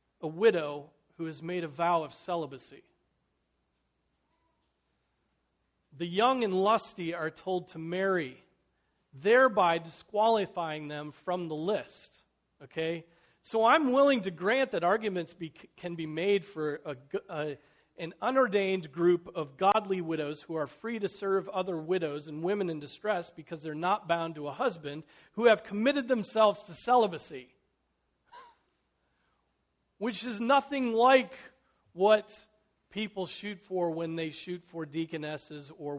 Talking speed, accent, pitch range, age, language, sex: 135 wpm, American, 145-190 Hz, 40-59, English, male